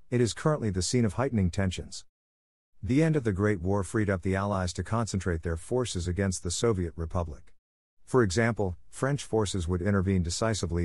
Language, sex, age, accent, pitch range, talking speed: English, male, 50-69, American, 90-110 Hz, 185 wpm